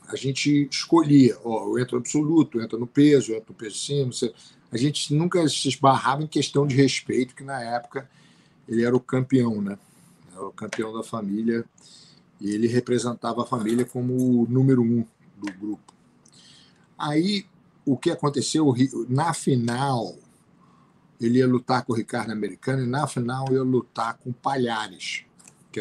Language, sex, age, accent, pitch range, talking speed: Portuguese, male, 50-69, Brazilian, 115-140 Hz, 165 wpm